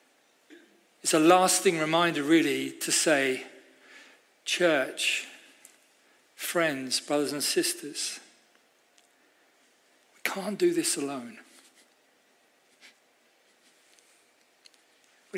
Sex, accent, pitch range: male, British, 170-220 Hz